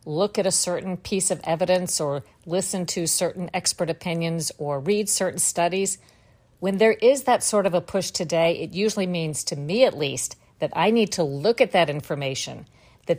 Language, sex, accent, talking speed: English, female, American, 190 wpm